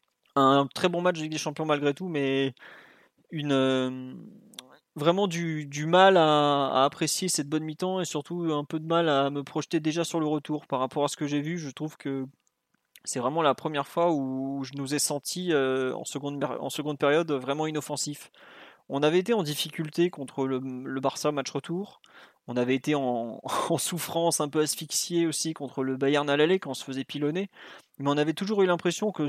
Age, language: 20-39, French